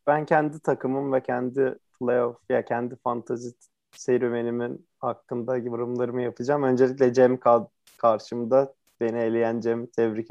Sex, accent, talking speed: male, native, 115 wpm